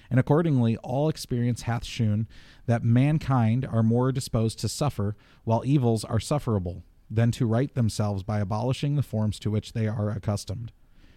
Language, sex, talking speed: English, male, 160 wpm